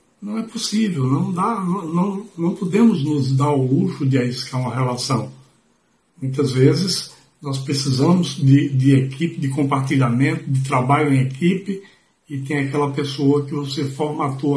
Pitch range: 135-160 Hz